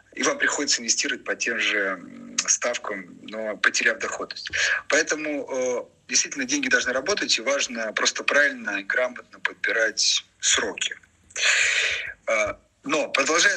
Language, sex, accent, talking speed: Russian, male, native, 115 wpm